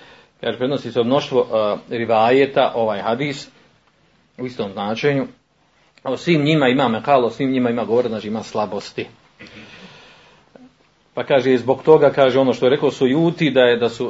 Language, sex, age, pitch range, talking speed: Croatian, male, 40-59, 110-135 Hz, 155 wpm